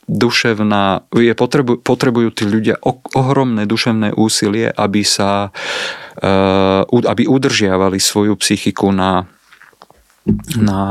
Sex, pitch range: male, 95-105 Hz